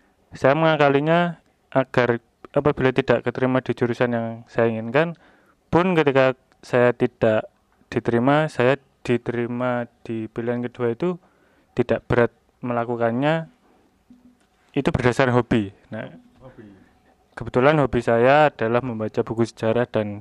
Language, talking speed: Indonesian, 110 wpm